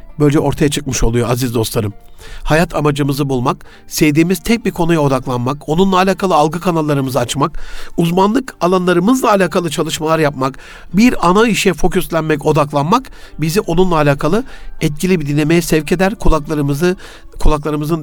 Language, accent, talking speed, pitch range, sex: Turkish, native, 130 wpm, 145-185 Hz, male